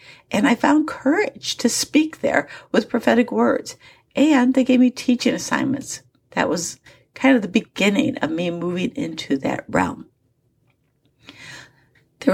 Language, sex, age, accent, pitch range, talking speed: English, female, 50-69, American, 175-255 Hz, 140 wpm